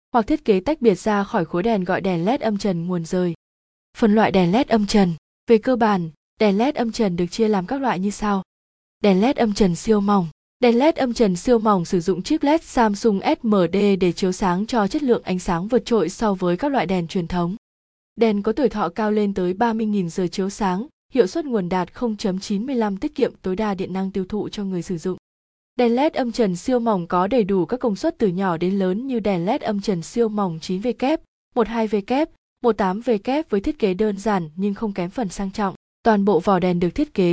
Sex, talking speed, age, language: female, 230 wpm, 20-39, Vietnamese